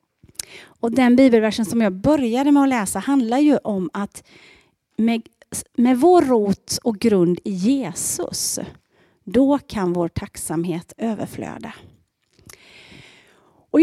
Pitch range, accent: 205-295 Hz, Norwegian